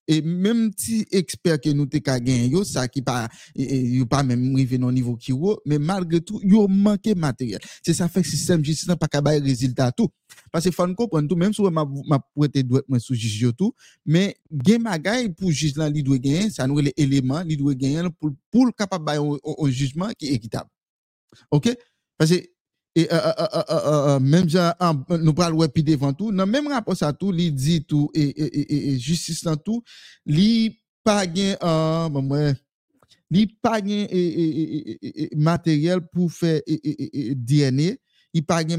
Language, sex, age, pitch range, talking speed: French, male, 50-69, 145-190 Hz, 170 wpm